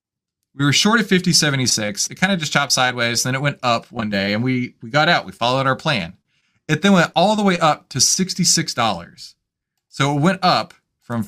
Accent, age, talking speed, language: American, 30-49, 225 wpm, English